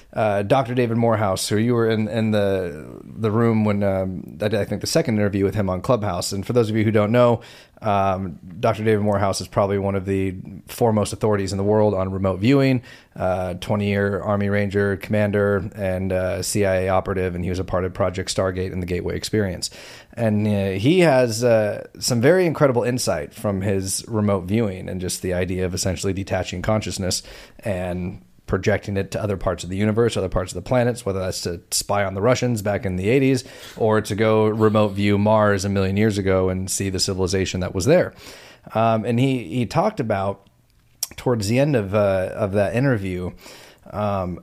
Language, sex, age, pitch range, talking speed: English, male, 30-49, 95-115 Hz, 200 wpm